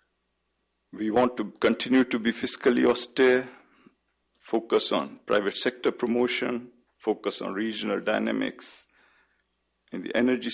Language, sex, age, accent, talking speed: English, male, 50-69, Indian, 115 wpm